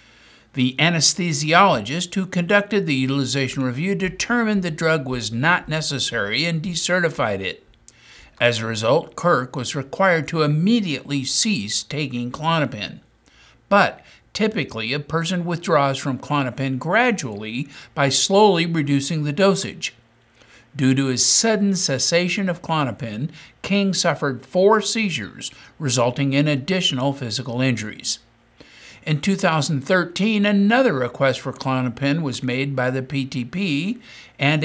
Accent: American